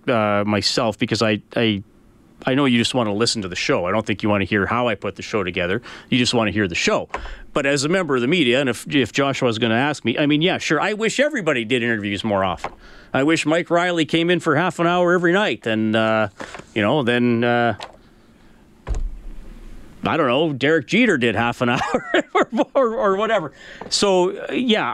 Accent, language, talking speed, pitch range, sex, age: American, English, 230 wpm, 115-165 Hz, male, 40-59